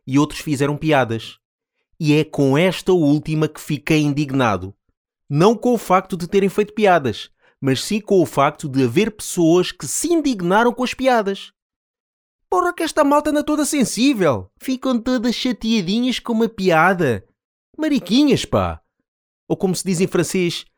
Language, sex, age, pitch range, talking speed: Portuguese, male, 30-49, 140-220 Hz, 160 wpm